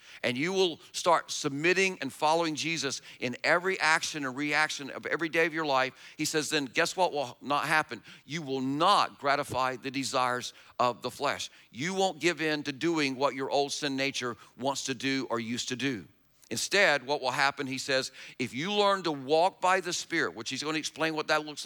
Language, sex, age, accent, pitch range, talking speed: English, male, 50-69, American, 140-190 Hz, 210 wpm